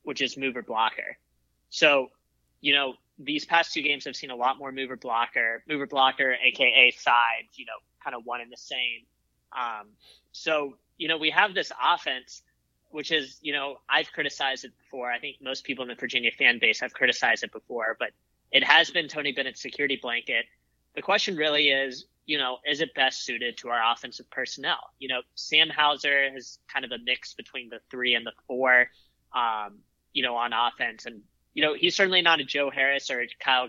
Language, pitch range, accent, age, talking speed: English, 125-145 Hz, American, 20-39, 200 wpm